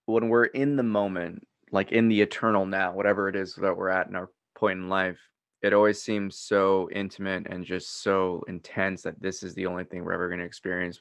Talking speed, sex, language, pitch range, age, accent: 225 wpm, male, English, 95-125 Hz, 20-39, American